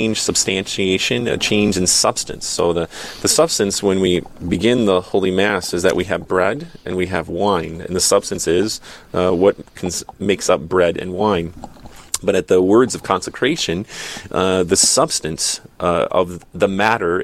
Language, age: English, 30-49